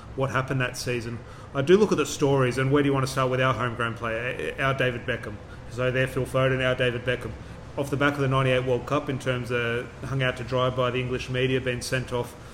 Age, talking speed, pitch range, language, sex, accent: 30-49, 260 wpm, 125-140 Hz, English, male, Australian